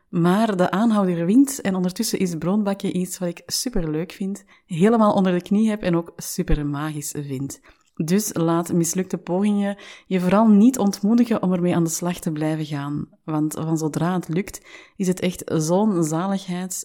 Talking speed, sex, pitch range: 175 wpm, female, 170-205 Hz